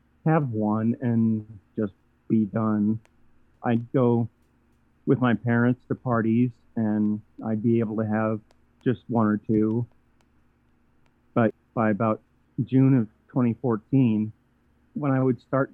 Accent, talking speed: American, 125 wpm